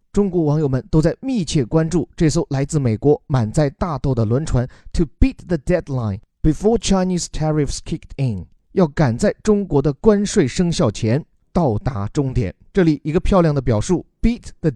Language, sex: Chinese, male